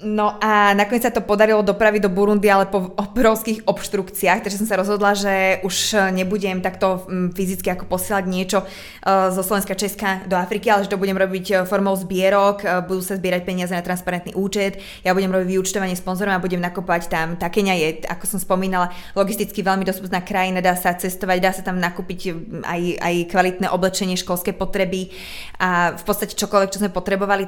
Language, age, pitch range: Czech, 20-39, 185-205 Hz